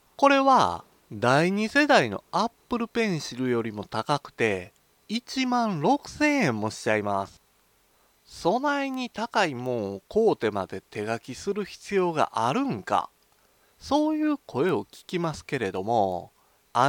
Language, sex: Japanese, male